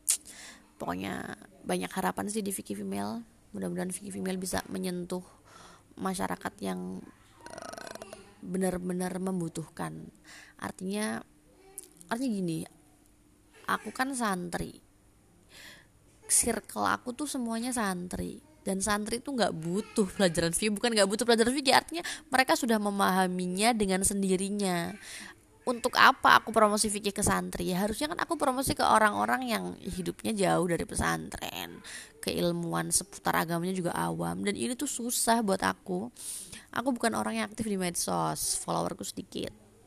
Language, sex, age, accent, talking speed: Indonesian, female, 20-39, native, 125 wpm